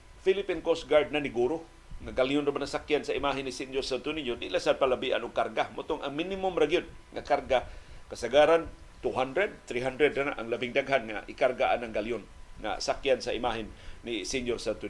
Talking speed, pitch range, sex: 175 wpm, 125-160 Hz, male